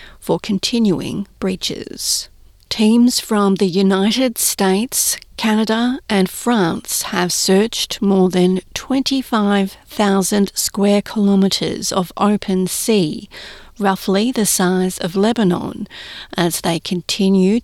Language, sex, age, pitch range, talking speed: English, female, 40-59, 190-230 Hz, 100 wpm